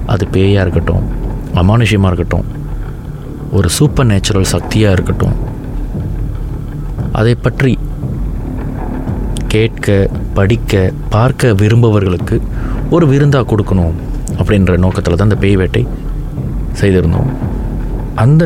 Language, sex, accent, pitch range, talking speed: Tamil, male, native, 95-130 Hz, 90 wpm